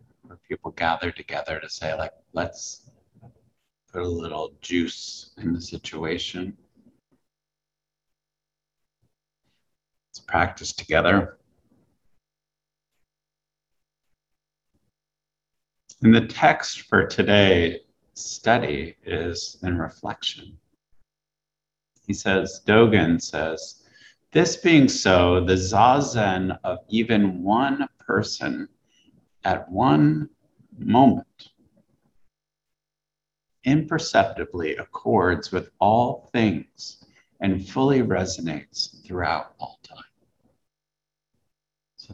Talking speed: 80 wpm